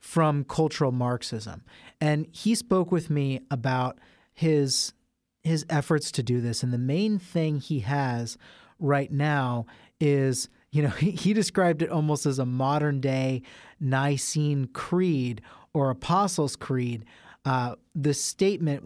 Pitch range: 130-155 Hz